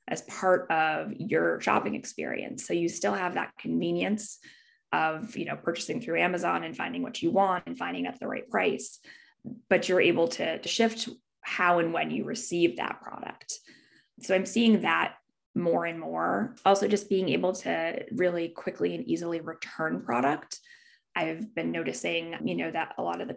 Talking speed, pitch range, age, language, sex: 180 wpm, 175-240 Hz, 20-39, English, female